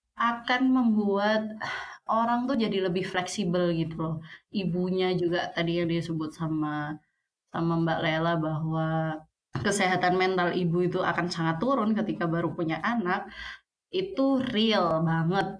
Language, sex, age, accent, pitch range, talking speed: Indonesian, female, 20-39, native, 170-220 Hz, 130 wpm